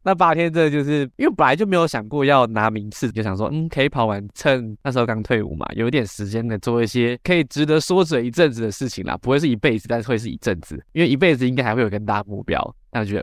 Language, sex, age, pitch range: Chinese, male, 20-39, 110-135 Hz